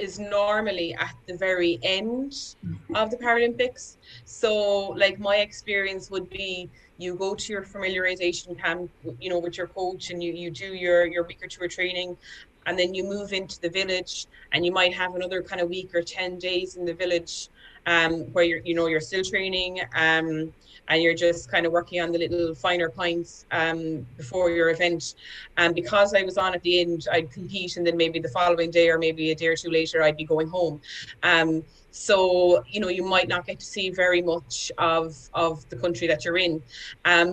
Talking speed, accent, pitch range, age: 205 wpm, Irish, 170-190 Hz, 20-39